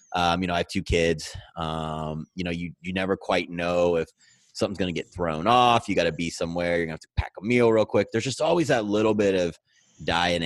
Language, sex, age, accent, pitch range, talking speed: English, male, 30-49, American, 80-95 Hz, 250 wpm